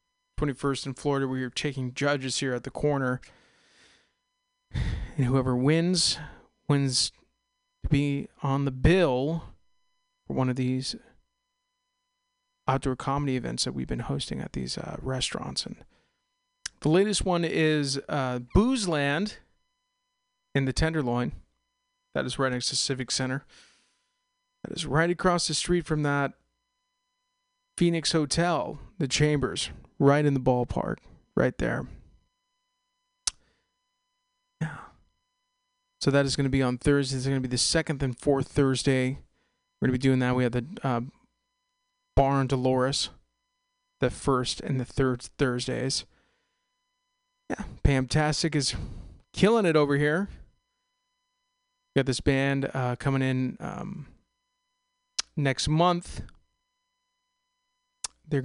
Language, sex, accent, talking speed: English, male, American, 125 wpm